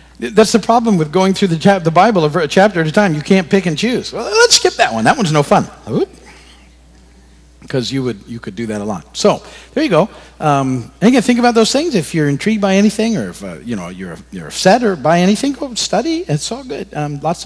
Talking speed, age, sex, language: 245 wpm, 50-69, male, English